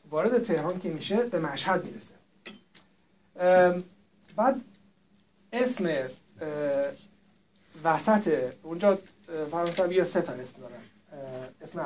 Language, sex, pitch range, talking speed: Persian, male, 155-200 Hz, 90 wpm